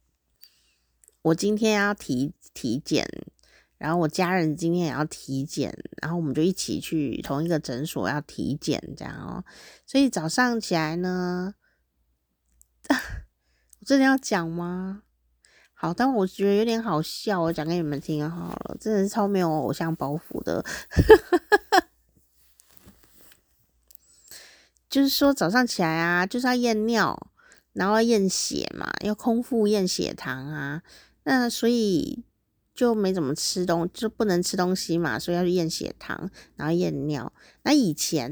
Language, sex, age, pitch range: Chinese, female, 30-49, 145-210 Hz